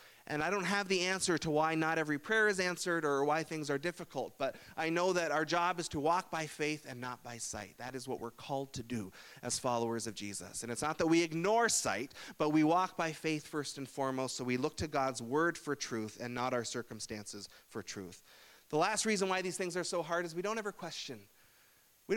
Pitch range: 140-195 Hz